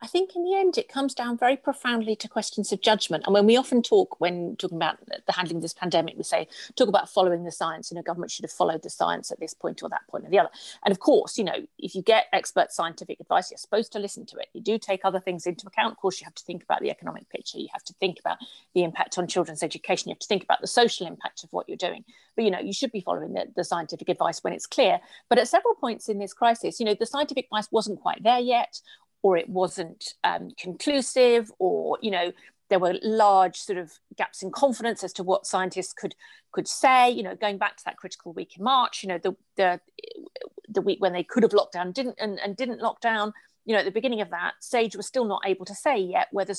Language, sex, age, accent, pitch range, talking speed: English, female, 40-59, British, 185-245 Hz, 265 wpm